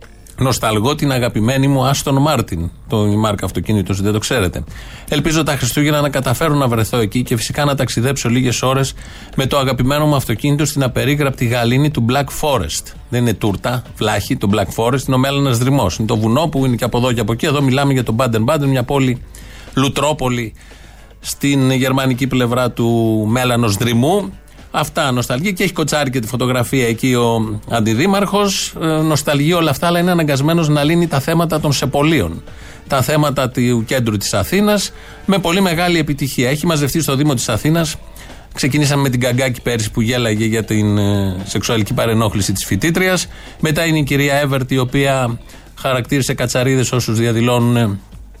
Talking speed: 170 wpm